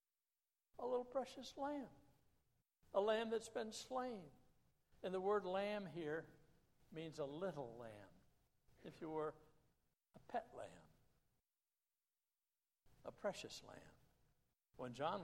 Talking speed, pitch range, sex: 115 wpm, 135-195 Hz, male